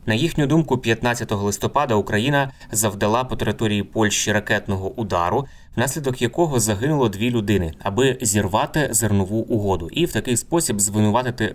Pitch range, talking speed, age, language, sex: 100-125 Hz, 135 wpm, 20-39, Ukrainian, male